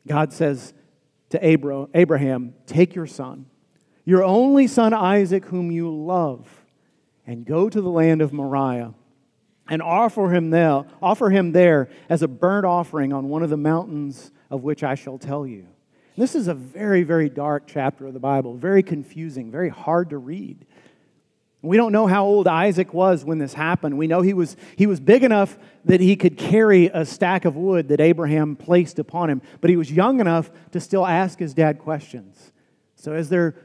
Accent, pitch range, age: American, 145-180 Hz, 40-59